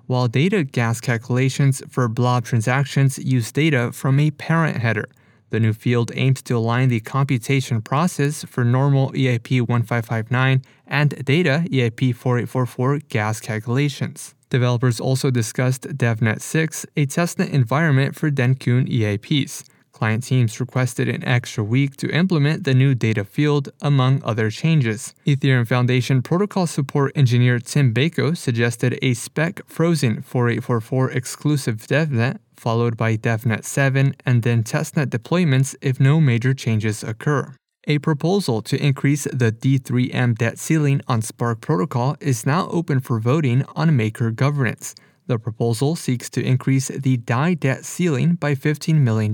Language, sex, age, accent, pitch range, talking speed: English, male, 20-39, American, 120-145 Hz, 135 wpm